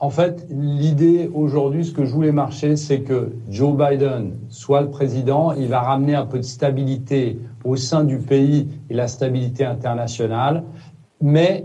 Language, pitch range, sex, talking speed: French, 135-170 Hz, male, 165 wpm